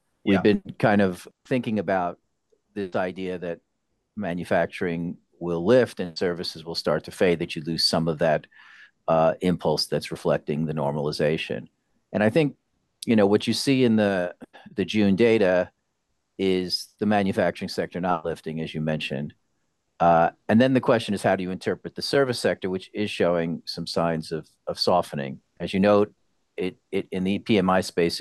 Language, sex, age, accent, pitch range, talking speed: English, male, 40-59, American, 85-95 Hz, 170 wpm